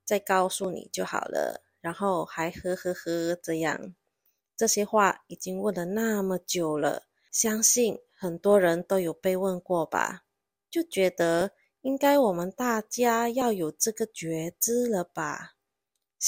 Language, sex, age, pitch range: Chinese, female, 20-39, 170-205 Hz